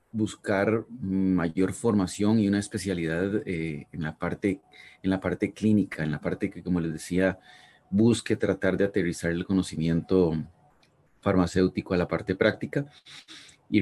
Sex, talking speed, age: male, 145 wpm, 30-49